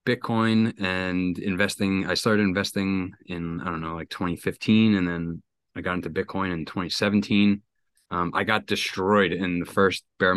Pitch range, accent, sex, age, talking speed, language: 90-105 Hz, American, male, 30-49, 160 wpm, English